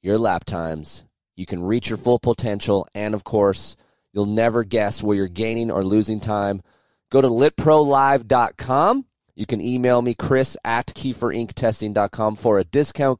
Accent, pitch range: American, 100-125 Hz